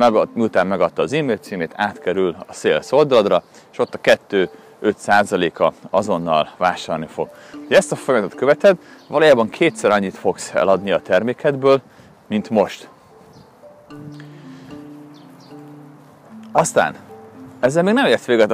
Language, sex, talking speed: Hungarian, male, 110 wpm